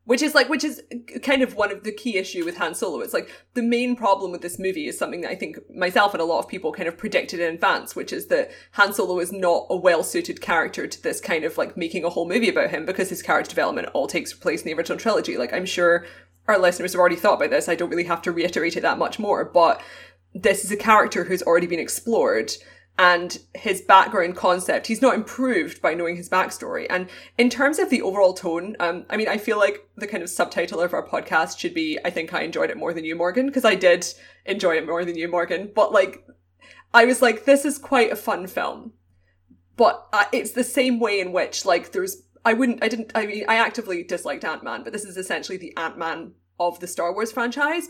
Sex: female